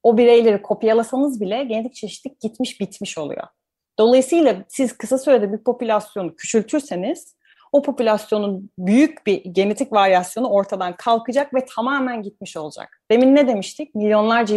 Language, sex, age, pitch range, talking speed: Turkish, female, 30-49, 185-260 Hz, 130 wpm